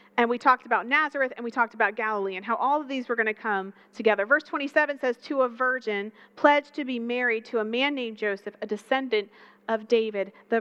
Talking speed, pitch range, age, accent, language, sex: 225 wpm, 215-275 Hz, 40-59, American, English, female